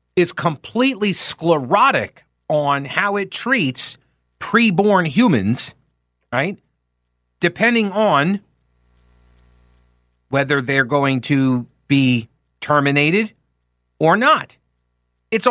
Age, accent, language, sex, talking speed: 50-69, American, English, male, 80 wpm